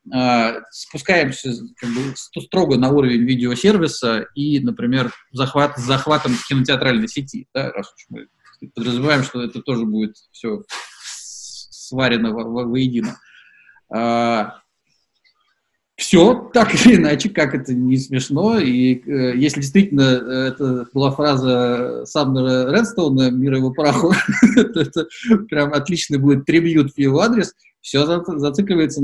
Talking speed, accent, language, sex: 120 wpm, native, Russian, male